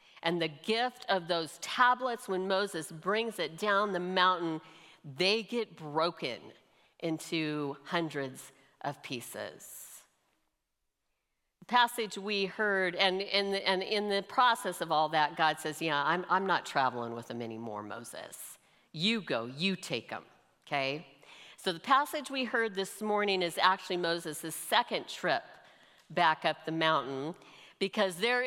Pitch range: 155-205 Hz